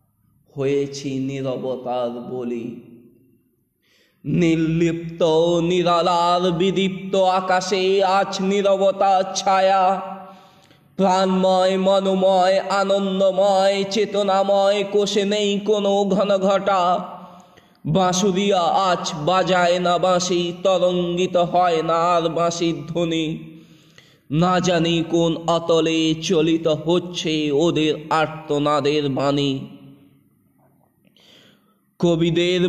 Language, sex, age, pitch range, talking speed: Bengali, male, 20-39, 165-195 Hz, 30 wpm